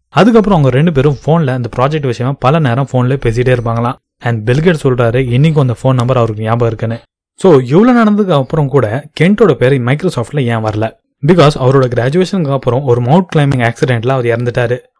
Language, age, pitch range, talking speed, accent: Tamil, 20-39, 120-155 Hz, 50 wpm, native